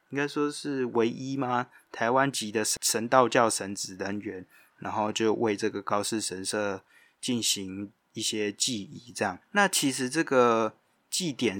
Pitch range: 100-120 Hz